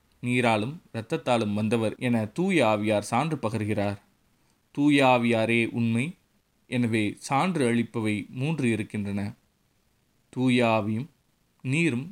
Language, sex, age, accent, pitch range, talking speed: Tamil, male, 30-49, native, 110-130 Hz, 80 wpm